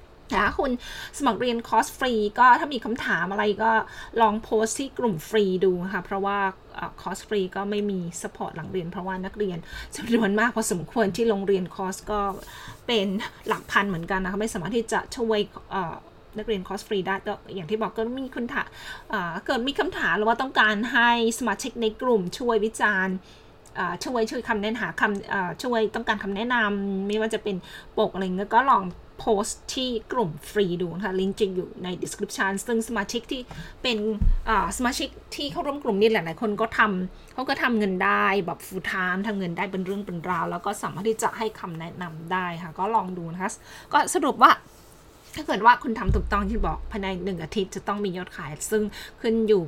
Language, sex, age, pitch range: Thai, female, 20-39, 190-225 Hz